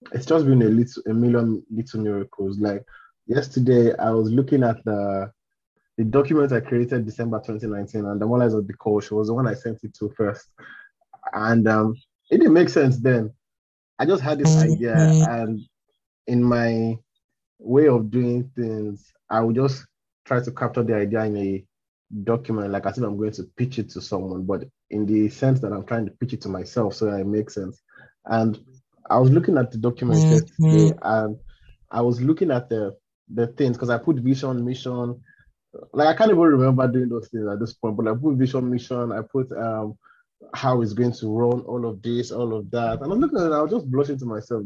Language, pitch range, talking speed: English, 110-130 Hz, 210 wpm